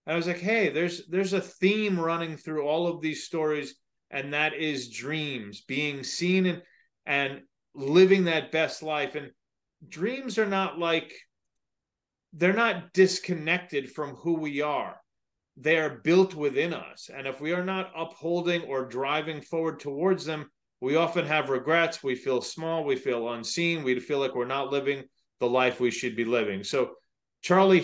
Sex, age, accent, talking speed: male, 30-49, American, 170 wpm